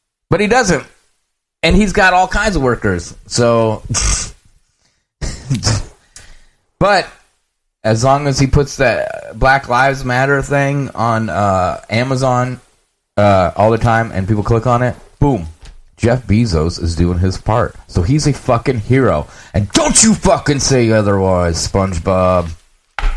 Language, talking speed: English, 135 wpm